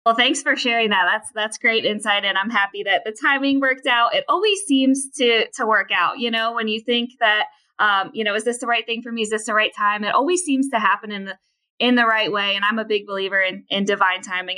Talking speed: 270 wpm